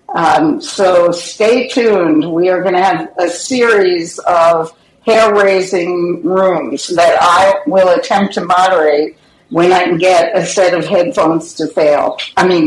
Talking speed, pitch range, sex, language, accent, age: 150 wpm, 175-210 Hz, female, English, American, 60-79